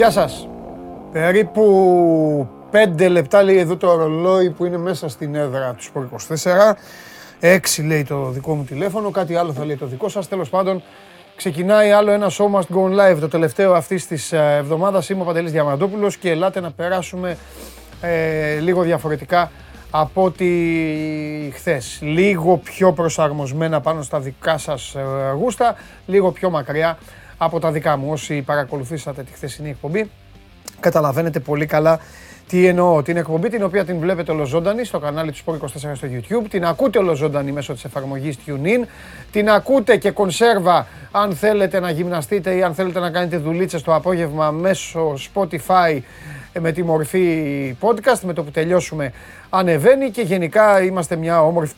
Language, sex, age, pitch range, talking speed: Greek, male, 30-49, 150-190 Hz, 155 wpm